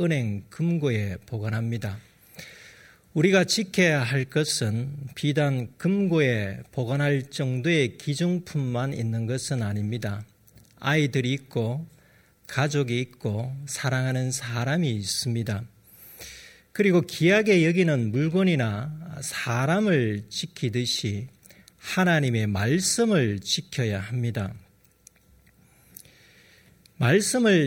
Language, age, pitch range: Korean, 40-59, 115-165 Hz